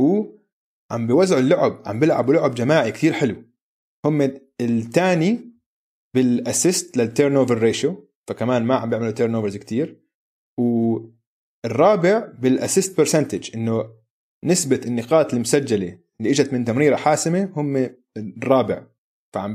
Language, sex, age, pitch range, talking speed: Arabic, male, 30-49, 115-150 Hz, 115 wpm